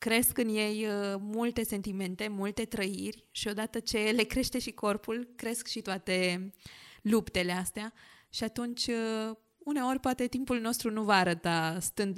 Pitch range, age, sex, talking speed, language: 185-220 Hz, 20-39, female, 145 wpm, Romanian